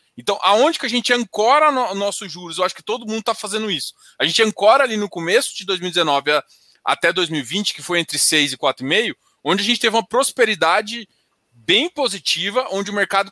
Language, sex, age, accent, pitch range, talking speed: Portuguese, male, 20-39, Brazilian, 160-225 Hz, 200 wpm